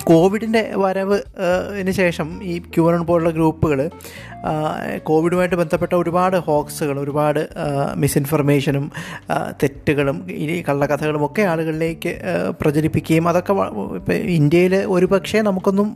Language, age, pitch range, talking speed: Malayalam, 20-39, 150-175 Hz, 100 wpm